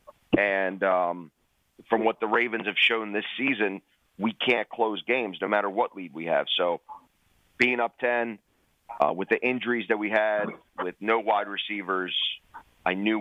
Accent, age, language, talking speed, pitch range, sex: American, 30-49, English, 170 wpm, 95-115 Hz, male